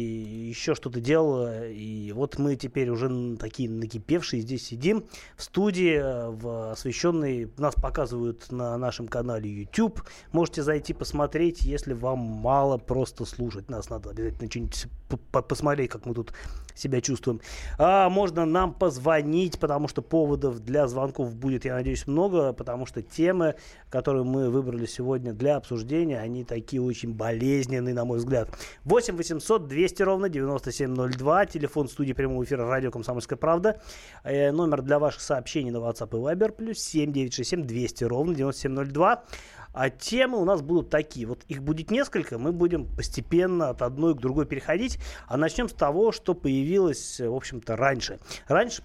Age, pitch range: 20-39, 120-155 Hz